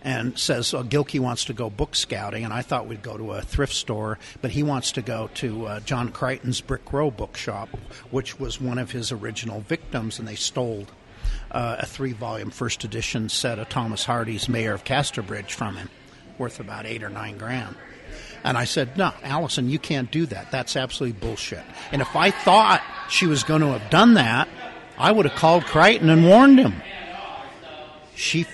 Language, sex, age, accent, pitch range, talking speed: English, male, 50-69, American, 115-145 Hz, 195 wpm